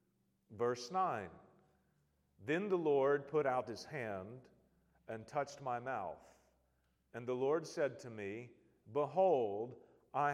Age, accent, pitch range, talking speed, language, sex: 40-59, American, 140-205 Hz, 120 wpm, English, male